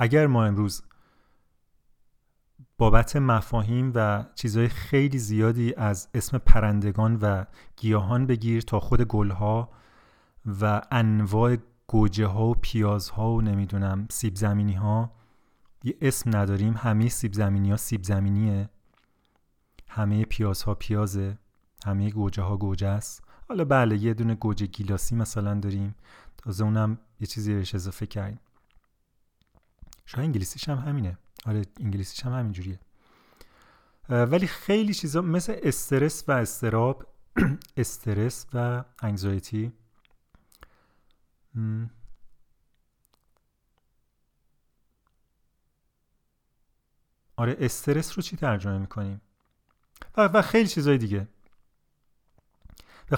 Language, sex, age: Persian, male, 30-49